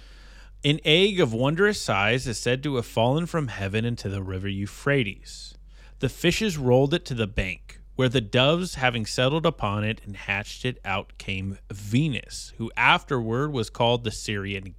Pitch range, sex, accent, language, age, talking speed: 100-130 Hz, male, American, English, 30-49, 170 wpm